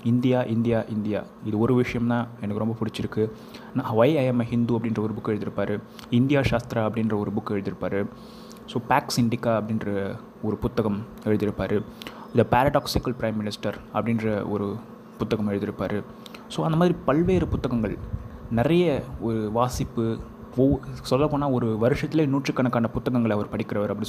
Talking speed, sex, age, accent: 135 wpm, male, 20-39, native